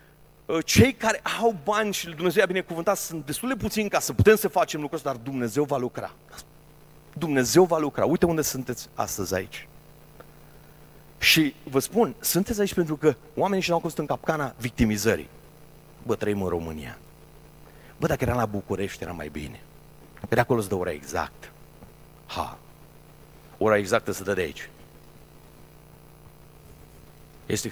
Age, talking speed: 40-59, 150 wpm